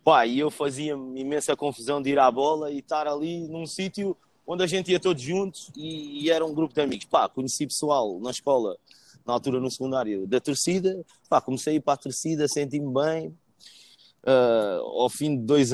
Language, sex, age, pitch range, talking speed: Portuguese, male, 20-39, 130-155 Hz, 200 wpm